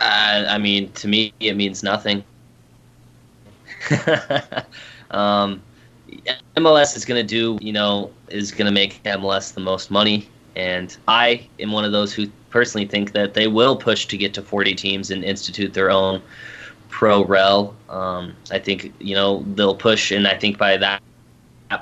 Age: 20-39